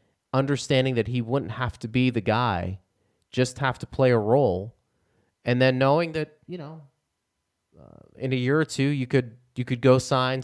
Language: English